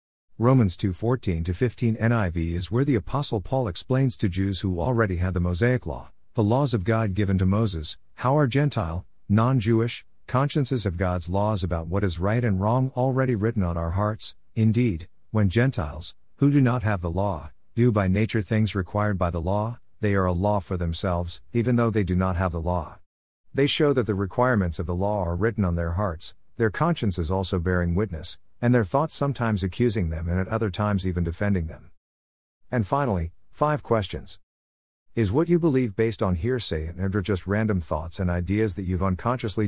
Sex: male